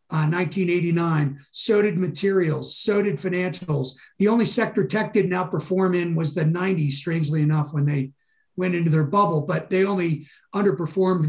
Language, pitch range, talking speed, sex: English, 170-210 Hz, 165 wpm, male